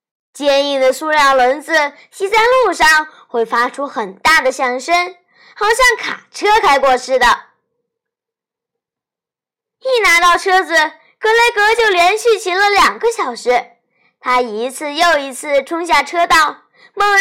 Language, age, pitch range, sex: Chinese, 20-39, 250-400 Hz, female